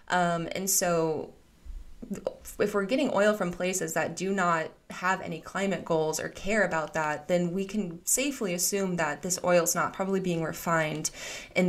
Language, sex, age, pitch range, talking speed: English, female, 20-39, 165-205 Hz, 175 wpm